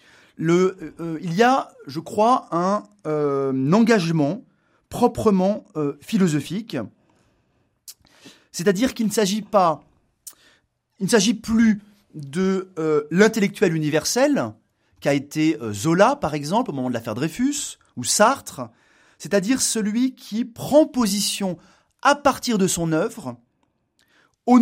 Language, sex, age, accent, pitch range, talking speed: French, male, 30-49, French, 155-225 Hz, 120 wpm